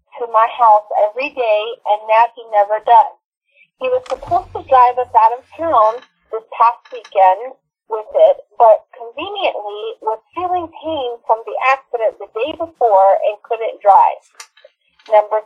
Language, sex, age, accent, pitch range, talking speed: English, female, 40-59, American, 225-315 Hz, 150 wpm